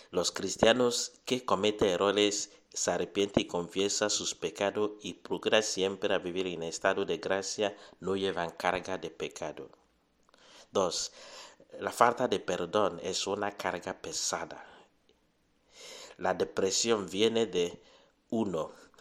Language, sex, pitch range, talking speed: English, male, 95-110 Hz, 125 wpm